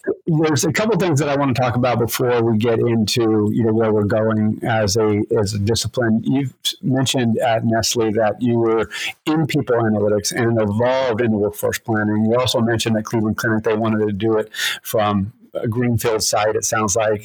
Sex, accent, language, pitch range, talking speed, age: male, American, English, 110-125 Hz, 200 wpm, 50-69